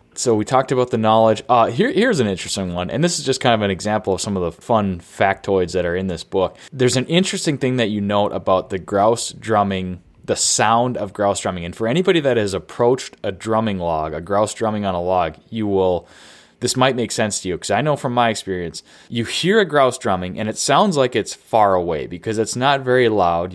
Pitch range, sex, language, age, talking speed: 95-120 Hz, male, English, 20-39, 235 wpm